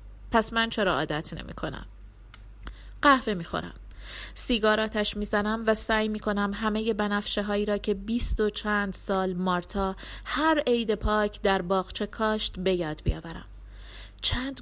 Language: Persian